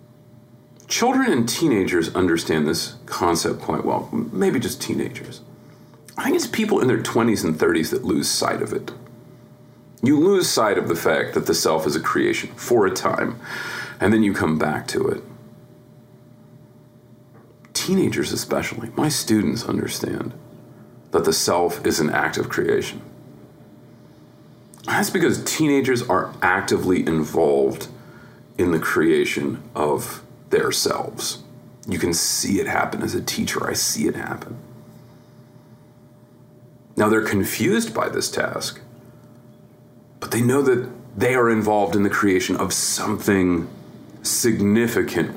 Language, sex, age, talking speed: English, male, 40-59, 135 wpm